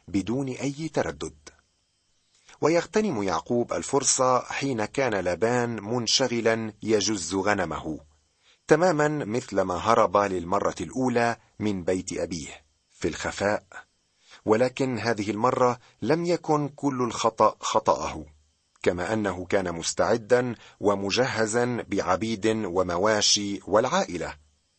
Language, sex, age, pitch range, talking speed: Arabic, male, 40-59, 95-125 Hz, 95 wpm